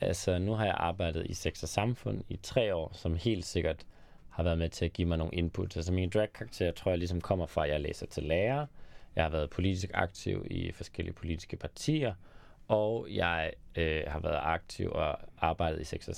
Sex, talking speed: male, 210 wpm